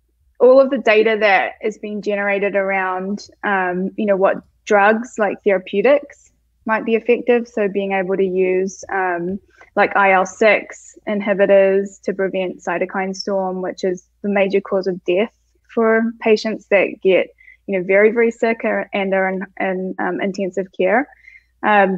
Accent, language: Australian, English